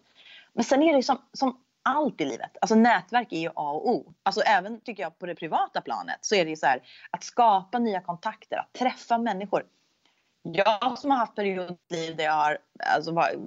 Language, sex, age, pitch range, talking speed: Swedish, female, 30-49, 165-245 Hz, 205 wpm